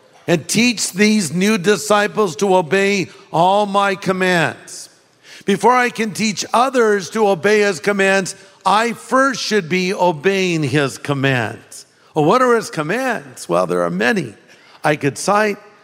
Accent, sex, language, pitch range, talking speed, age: American, male, English, 170-210 Hz, 145 wpm, 50-69